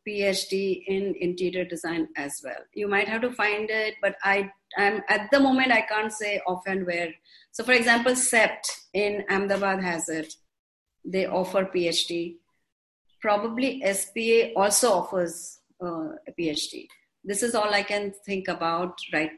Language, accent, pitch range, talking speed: English, Indian, 185-230 Hz, 155 wpm